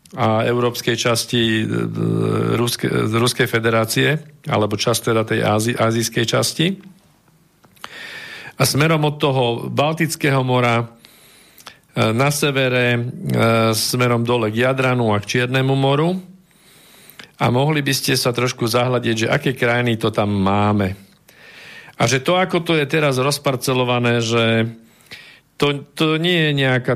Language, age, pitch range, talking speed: Slovak, 50-69, 110-135 Hz, 125 wpm